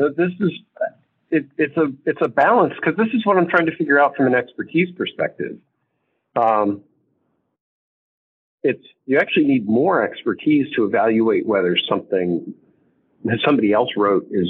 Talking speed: 155 wpm